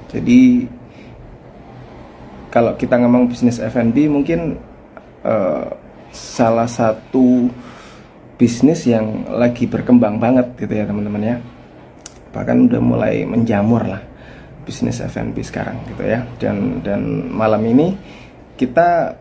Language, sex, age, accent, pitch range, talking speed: Indonesian, male, 20-39, native, 110-130 Hz, 105 wpm